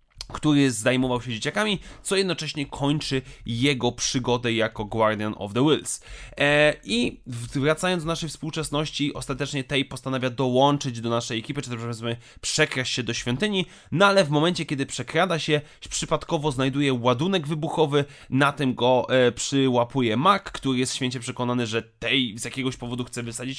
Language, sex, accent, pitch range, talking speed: Polish, male, native, 125-155 Hz, 160 wpm